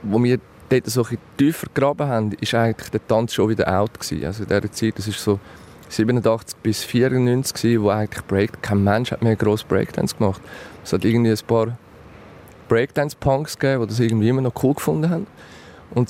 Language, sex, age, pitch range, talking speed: German, male, 30-49, 110-130 Hz, 195 wpm